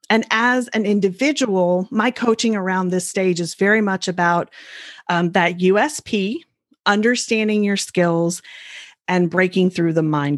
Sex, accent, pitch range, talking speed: female, American, 190-260 Hz, 140 wpm